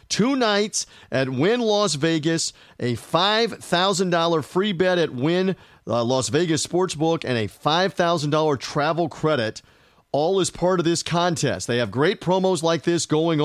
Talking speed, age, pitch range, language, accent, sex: 145 wpm, 40-59, 135-185 Hz, English, American, male